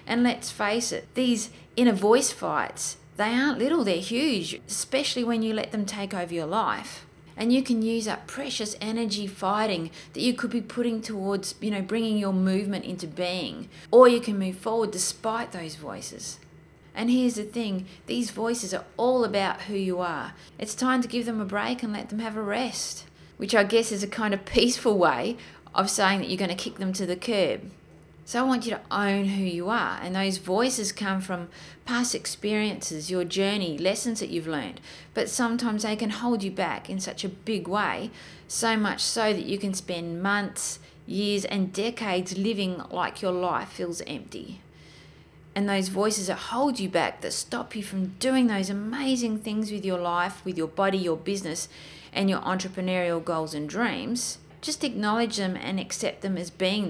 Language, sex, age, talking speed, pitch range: English, female, 30-49, 195 wpm, 185-230 Hz